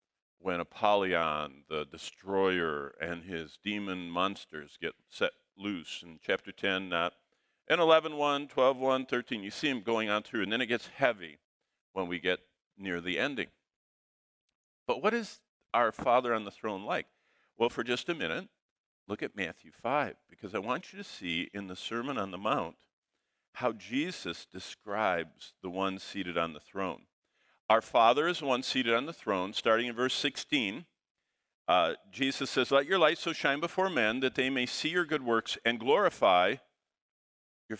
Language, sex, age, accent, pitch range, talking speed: English, male, 50-69, American, 90-140 Hz, 175 wpm